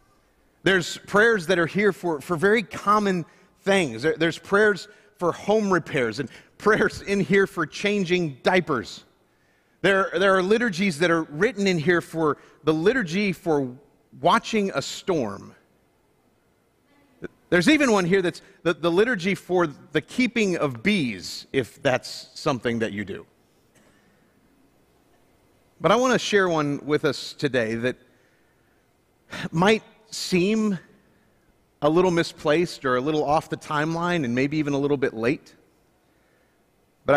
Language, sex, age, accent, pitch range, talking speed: English, male, 40-59, American, 140-195 Hz, 140 wpm